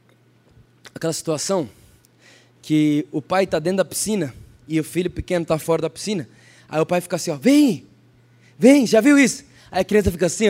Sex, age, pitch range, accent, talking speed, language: male, 20-39, 170-275 Hz, Brazilian, 190 wpm, Portuguese